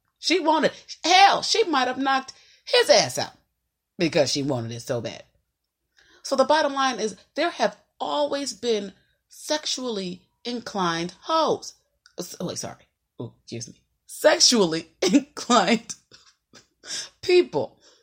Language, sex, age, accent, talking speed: English, female, 30-49, American, 120 wpm